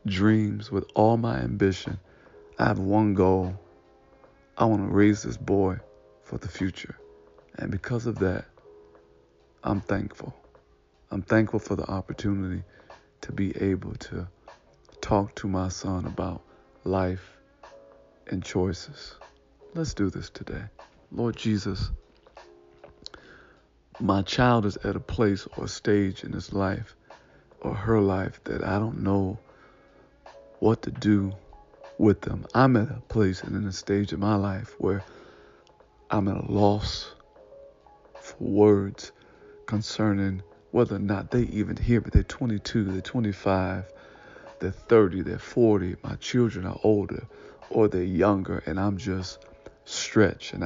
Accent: American